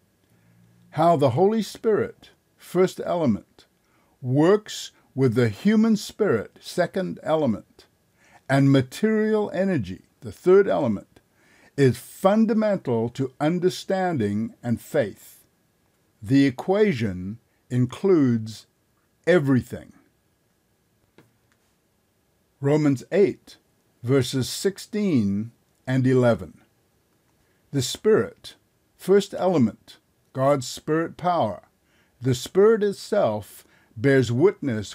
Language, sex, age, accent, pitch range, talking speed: English, male, 60-79, American, 120-190 Hz, 80 wpm